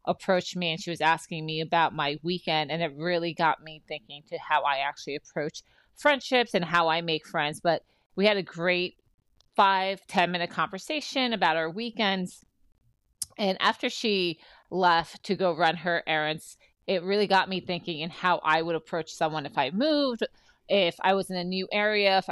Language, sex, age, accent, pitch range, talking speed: English, female, 30-49, American, 165-200 Hz, 185 wpm